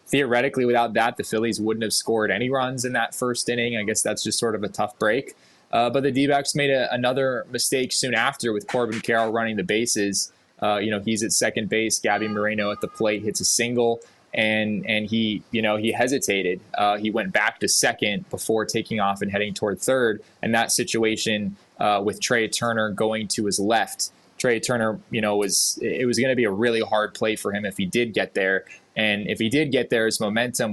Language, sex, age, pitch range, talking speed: English, male, 20-39, 105-115 Hz, 220 wpm